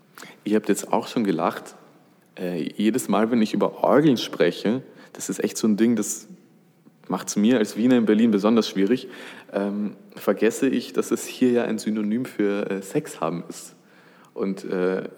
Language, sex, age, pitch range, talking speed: German, male, 20-39, 95-110 Hz, 180 wpm